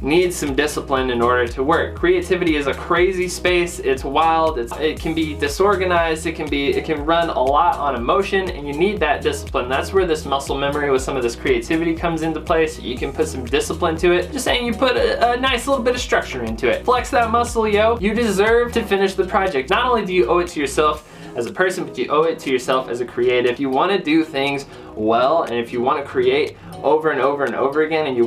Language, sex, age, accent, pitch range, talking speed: English, male, 20-39, American, 135-195 Hz, 250 wpm